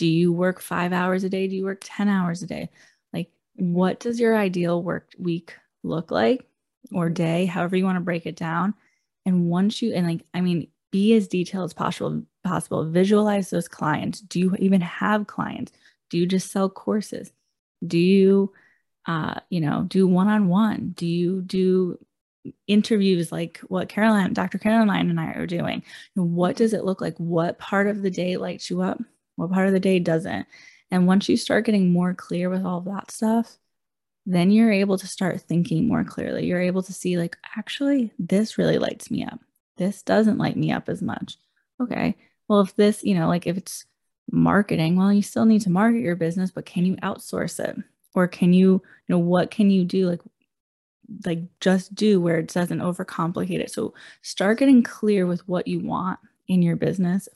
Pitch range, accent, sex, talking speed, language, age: 175-210 Hz, American, female, 195 wpm, English, 20-39